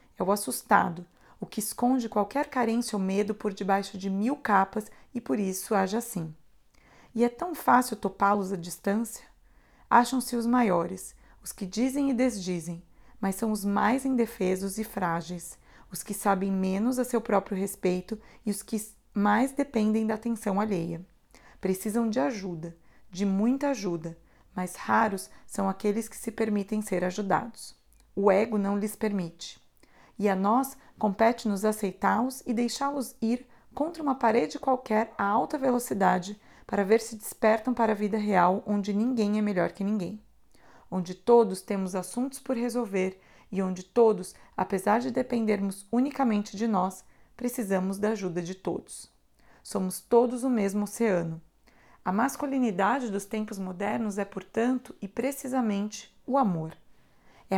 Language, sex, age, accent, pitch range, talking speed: Portuguese, female, 30-49, Brazilian, 195-235 Hz, 150 wpm